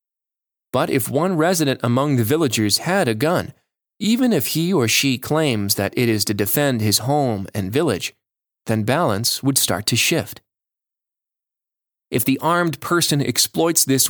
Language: English